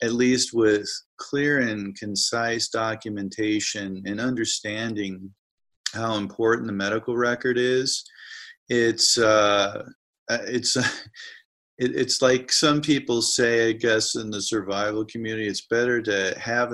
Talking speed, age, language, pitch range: 120 wpm, 40-59, English, 105-120 Hz